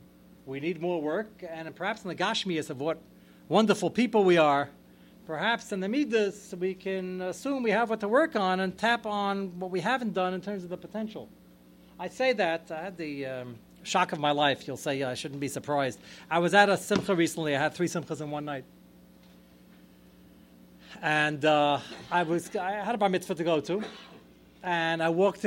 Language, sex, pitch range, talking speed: English, male, 145-210 Hz, 205 wpm